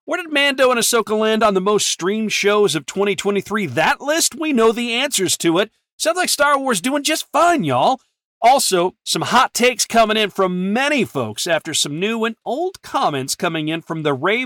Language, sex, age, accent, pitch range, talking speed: English, male, 40-59, American, 165-225 Hz, 205 wpm